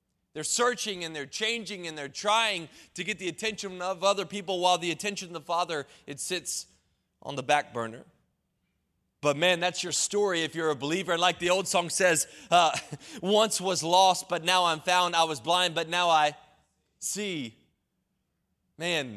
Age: 20-39